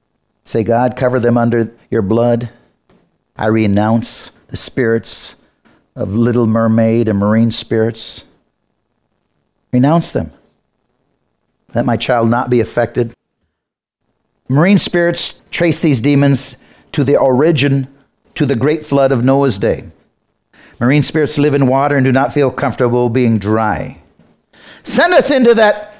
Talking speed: 130 wpm